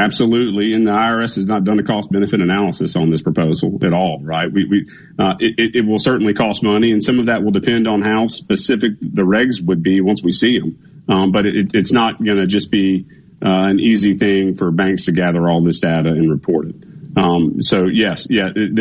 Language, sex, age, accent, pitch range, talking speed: English, male, 40-59, American, 95-110 Hz, 225 wpm